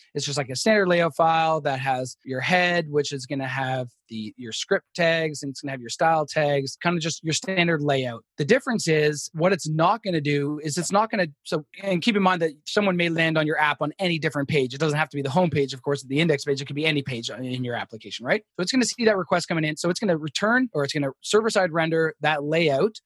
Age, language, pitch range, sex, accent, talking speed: 20-39, English, 140-175 Hz, male, American, 285 wpm